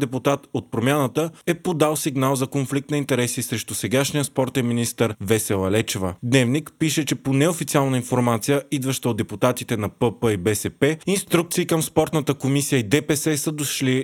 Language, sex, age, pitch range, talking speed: Bulgarian, male, 30-49, 120-145 Hz, 160 wpm